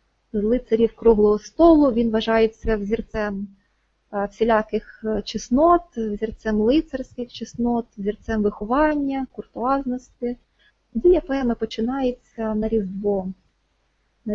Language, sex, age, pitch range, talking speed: Ukrainian, female, 20-39, 220-260 Hz, 85 wpm